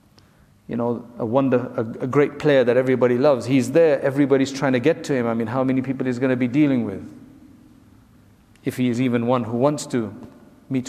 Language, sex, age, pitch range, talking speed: English, male, 50-69, 115-145 Hz, 210 wpm